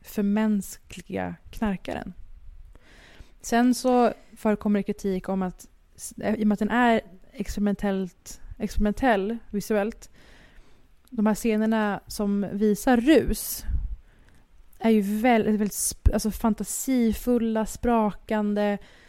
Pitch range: 190-225 Hz